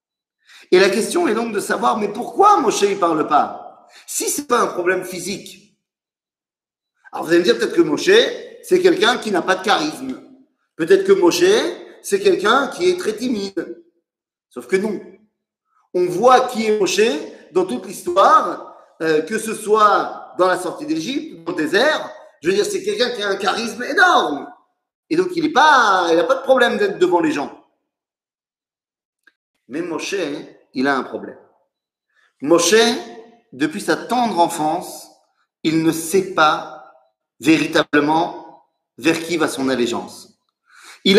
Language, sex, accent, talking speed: French, male, French, 160 wpm